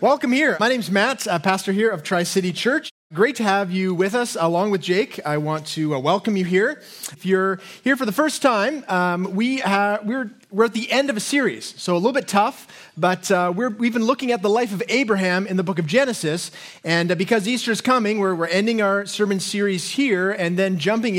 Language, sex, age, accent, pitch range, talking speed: English, male, 30-49, American, 175-225 Hz, 230 wpm